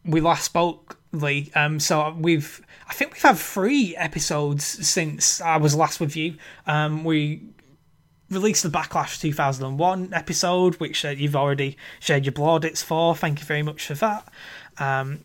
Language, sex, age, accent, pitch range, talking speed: English, male, 20-39, British, 140-165 Hz, 165 wpm